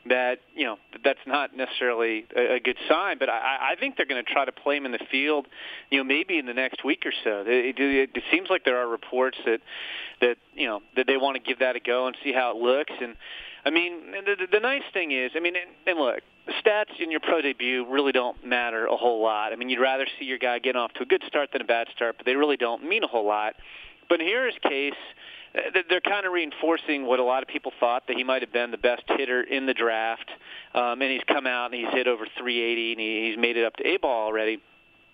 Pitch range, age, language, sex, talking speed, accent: 120-150 Hz, 30-49, English, male, 250 wpm, American